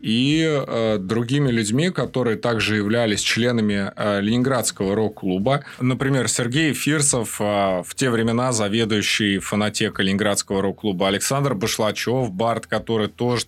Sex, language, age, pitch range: male, Russian, 20-39, 110-145 Hz